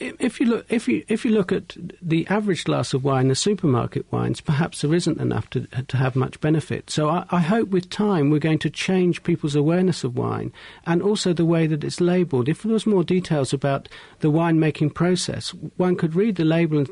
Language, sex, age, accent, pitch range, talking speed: English, male, 50-69, British, 140-180 Hz, 225 wpm